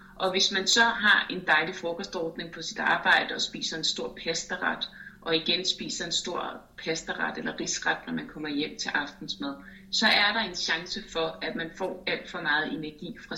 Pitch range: 165-220 Hz